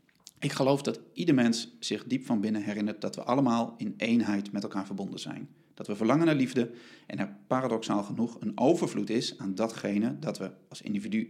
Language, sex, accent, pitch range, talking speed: Dutch, male, Dutch, 110-145 Hz, 195 wpm